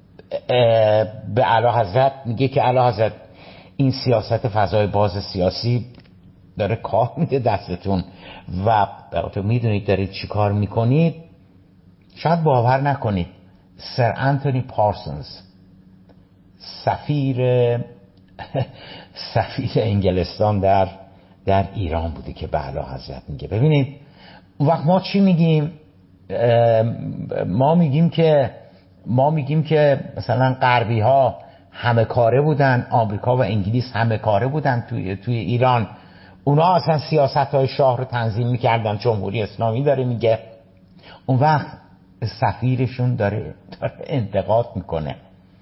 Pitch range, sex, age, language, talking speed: 95-135 Hz, male, 60-79, Persian, 115 wpm